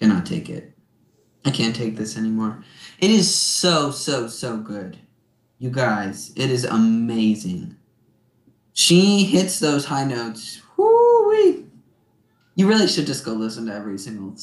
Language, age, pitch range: English, 20-39, 115-140 Hz